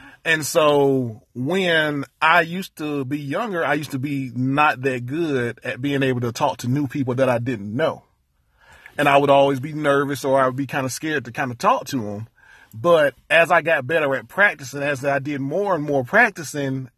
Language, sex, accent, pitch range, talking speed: English, male, American, 130-150 Hz, 210 wpm